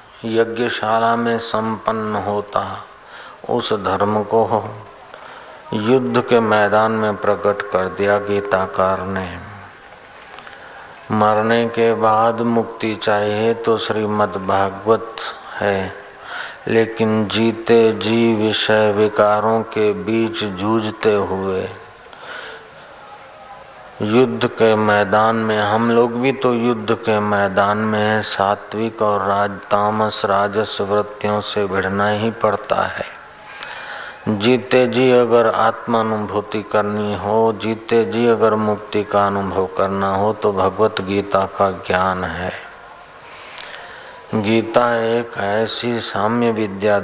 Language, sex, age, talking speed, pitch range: Hindi, male, 50-69, 105 wpm, 100-115 Hz